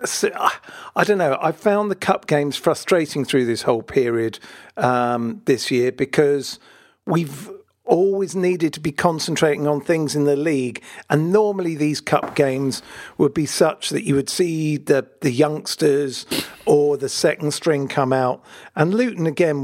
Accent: British